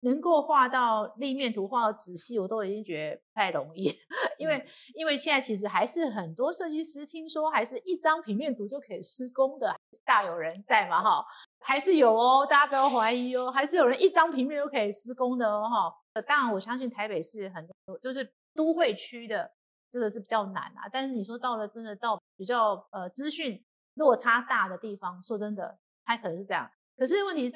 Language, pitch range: Chinese, 210-280 Hz